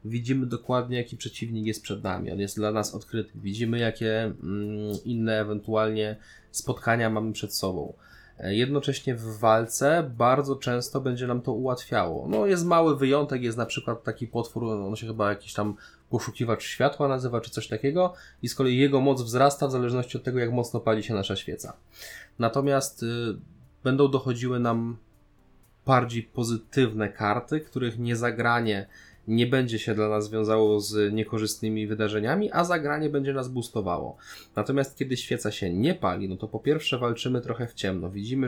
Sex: male